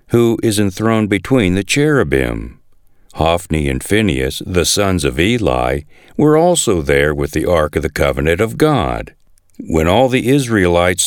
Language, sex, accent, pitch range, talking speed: English, male, American, 80-130 Hz, 150 wpm